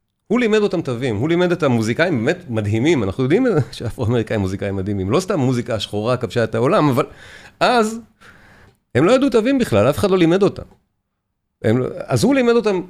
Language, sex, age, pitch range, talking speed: Hebrew, male, 40-59, 110-165 Hz, 190 wpm